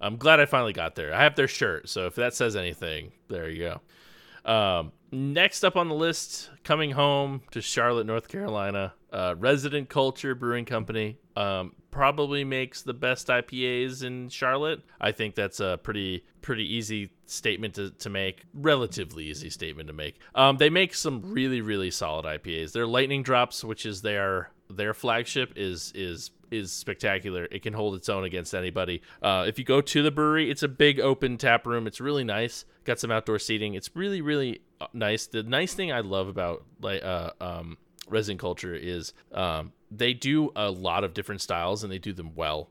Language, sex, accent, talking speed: English, male, American, 190 wpm